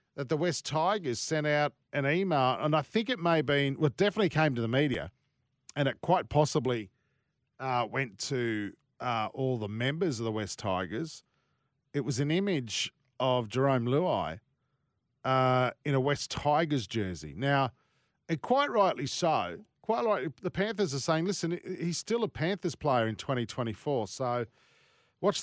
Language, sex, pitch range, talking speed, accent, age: English, male, 120-150 Hz, 165 wpm, Australian, 40-59